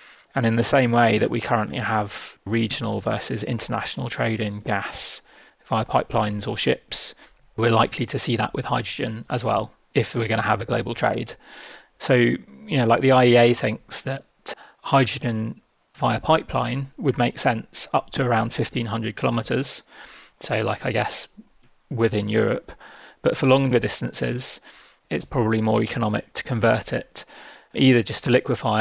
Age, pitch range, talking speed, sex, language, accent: 30-49, 110-120 Hz, 160 wpm, male, English, British